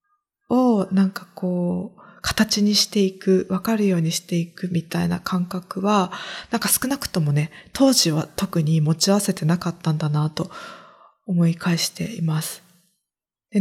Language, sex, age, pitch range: Japanese, female, 20-39, 170-210 Hz